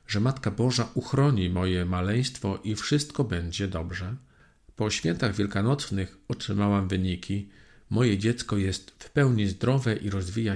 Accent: native